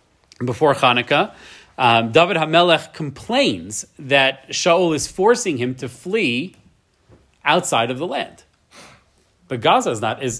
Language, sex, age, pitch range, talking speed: English, male, 30-49, 125-160 Hz, 125 wpm